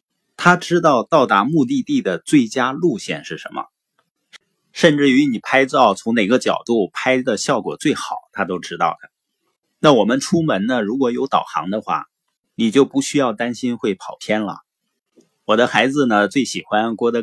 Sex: male